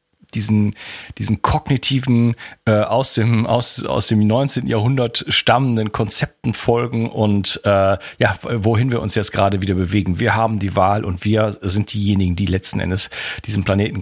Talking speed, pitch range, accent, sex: 160 wpm, 100-125 Hz, German, male